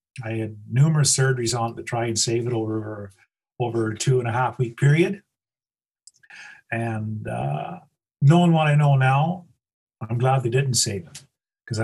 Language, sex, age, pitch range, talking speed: English, male, 50-69, 115-130 Hz, 150 wpm